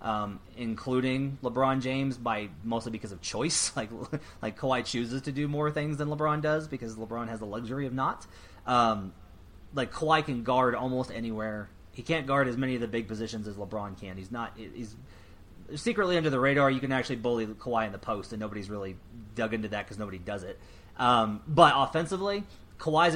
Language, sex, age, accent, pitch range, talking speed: English, male, 30-49, American, 110-135 Hz, 195 wpm